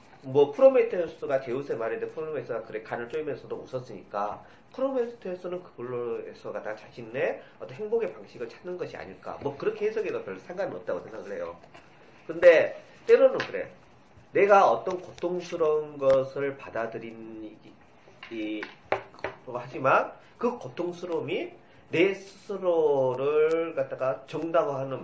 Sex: male